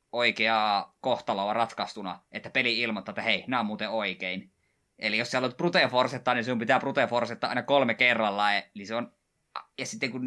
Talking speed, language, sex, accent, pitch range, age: 175 wpm, Finnish, male, native, 105-130 Hz, 20-39